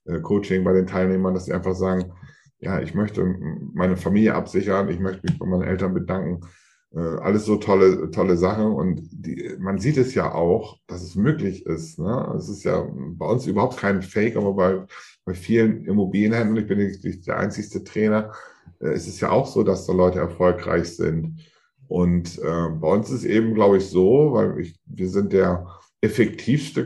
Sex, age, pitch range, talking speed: male, 50-69, 95-125 Hz, 190 wpm